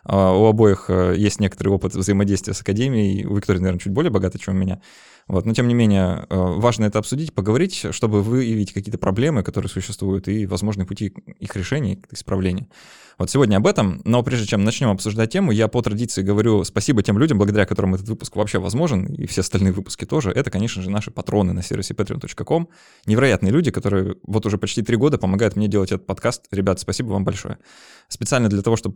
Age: 20-39